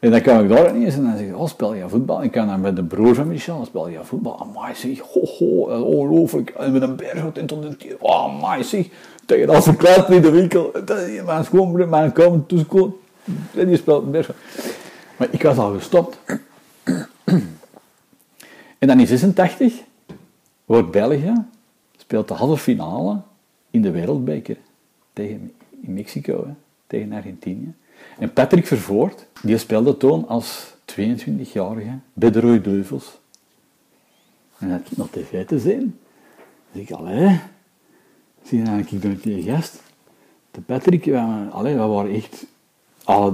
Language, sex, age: Dutch, male, 50-69